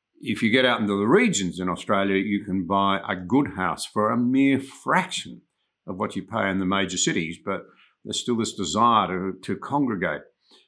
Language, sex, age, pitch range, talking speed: English, male, 50-69, 95-120 Hz, 195 wpm